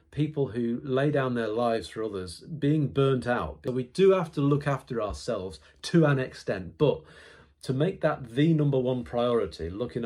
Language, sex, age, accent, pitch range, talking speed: English, male, 40-59, British, 95-145 Hz, 180 wpm